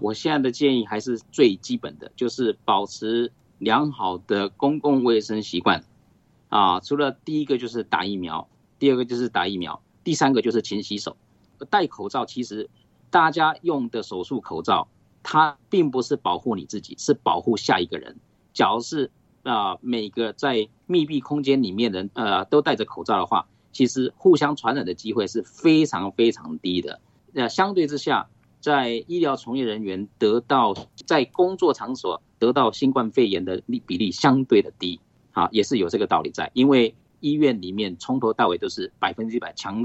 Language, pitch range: Chinese, 110-145 Hz